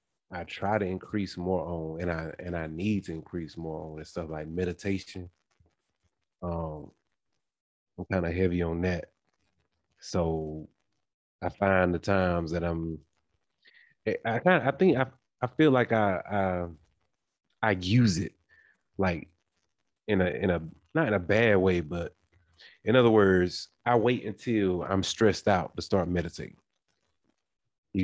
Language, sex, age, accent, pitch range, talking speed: English, male, 30-49, American, 85-95 Hz, 150 wpm